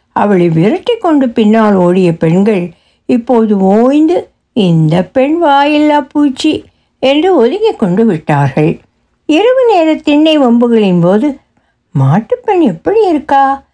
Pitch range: 195-295 Hz